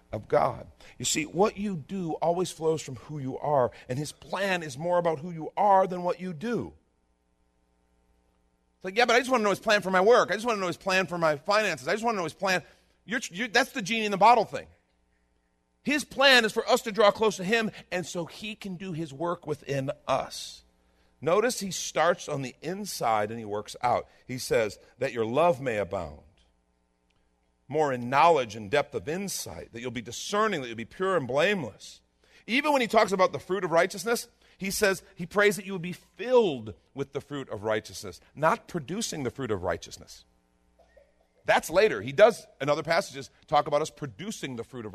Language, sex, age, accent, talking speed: English, male, 50-69, American, 215 wpm